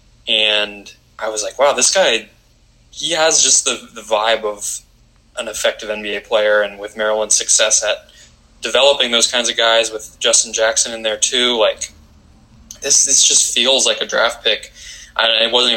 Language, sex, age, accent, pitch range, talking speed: English, male, 20-39, American, 105-115 Hz, 175 wpm